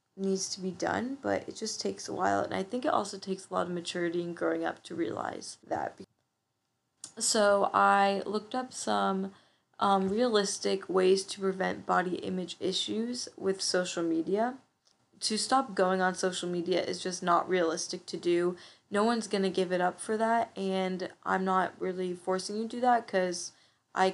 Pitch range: 185-215 Hz